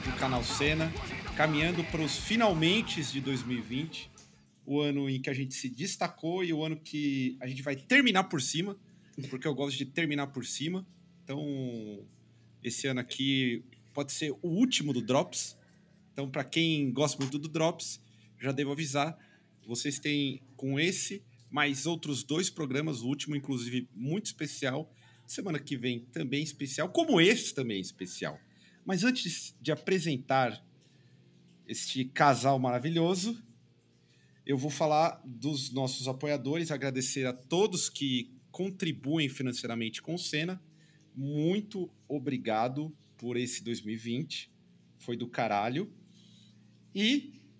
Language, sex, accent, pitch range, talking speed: Portuguese, male, Brazilian, 125-165 Hz, 135 wpm